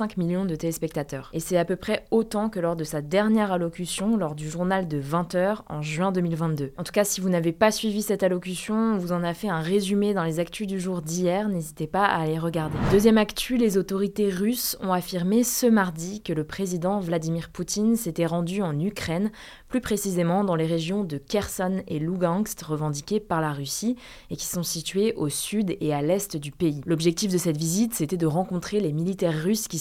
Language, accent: French, French